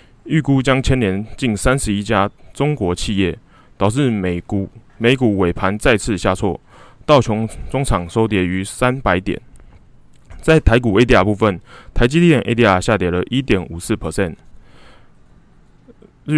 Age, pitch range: 20-39, 95-130 Hz